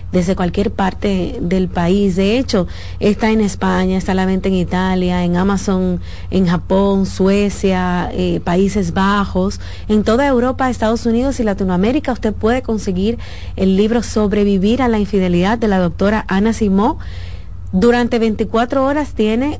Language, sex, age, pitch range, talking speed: Spanish, female, 30-49, 180-220 Hz, 145 wpm